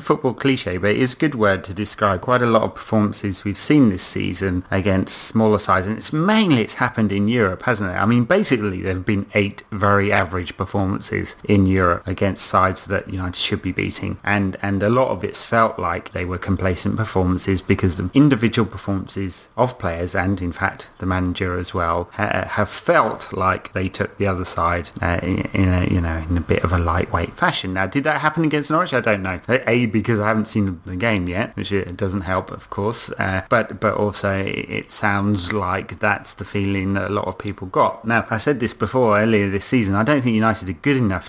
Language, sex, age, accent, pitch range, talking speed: English, male, 30-49, British, 95-115 Hz, 215 wpm